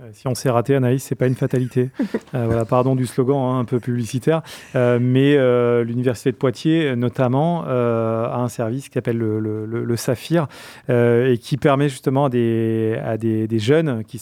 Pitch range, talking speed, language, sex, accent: 115-140 Hz, 205 wpm, French, male, French